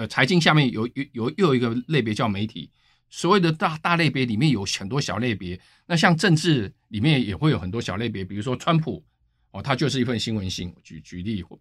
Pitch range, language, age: 110-155 Hz, Chinese, 50-69